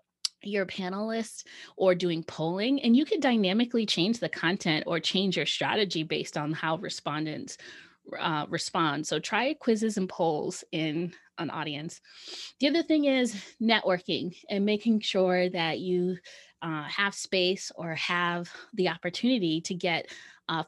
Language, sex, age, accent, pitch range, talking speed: English, female, 20-39, American, 170-220 Hz, 145 wpm